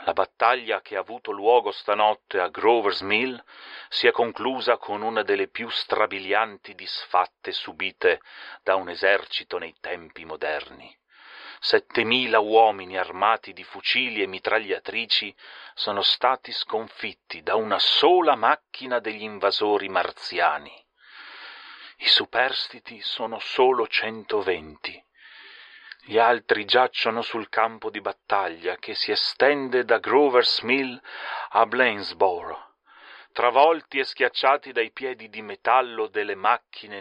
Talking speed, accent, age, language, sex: 115 wpm, native, 40-59, Italian, male